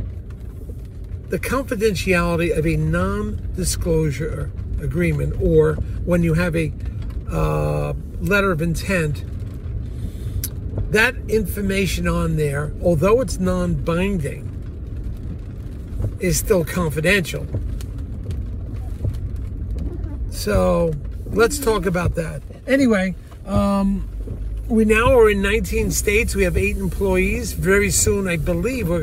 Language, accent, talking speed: English, American, 95 wpm